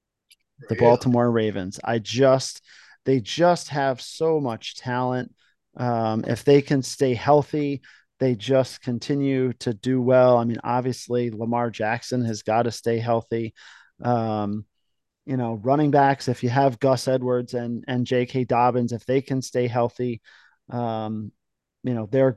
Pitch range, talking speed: 115-135 Hz, 150 wpm